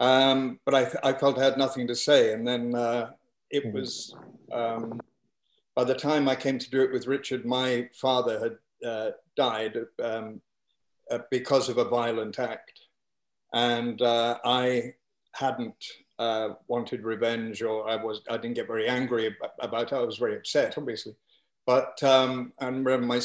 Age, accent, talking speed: 50-69, British, 170 wpm